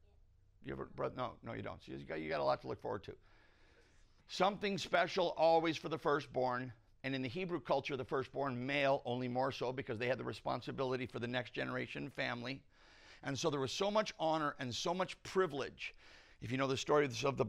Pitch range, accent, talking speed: 120-145 Hz, American, 215 wpm